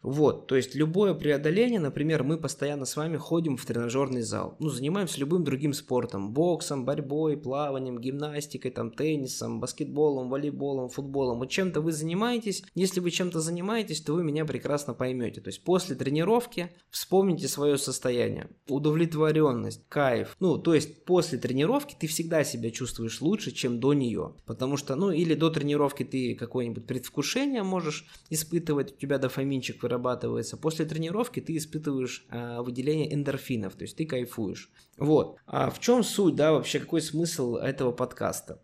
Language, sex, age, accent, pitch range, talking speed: Russian, male, 20-39, native, 130-160 Hz, 155 wpm